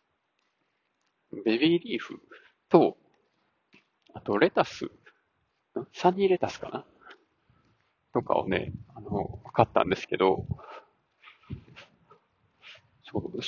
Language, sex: Japanese, male